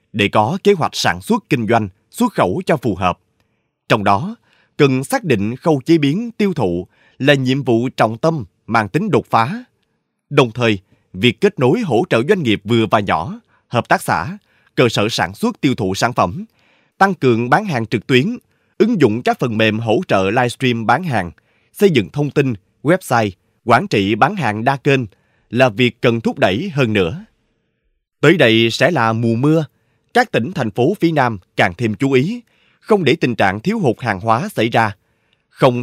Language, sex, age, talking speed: Vietnamese, male, 20-39, 195 wpm